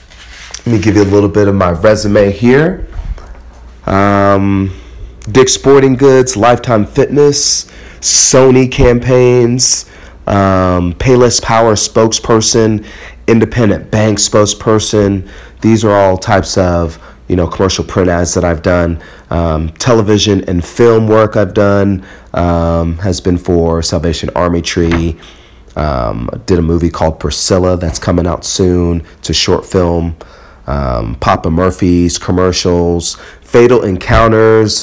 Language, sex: English, male